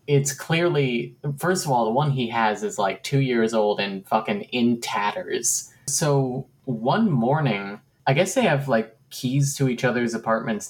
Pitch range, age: 115-140 Hz, 20-39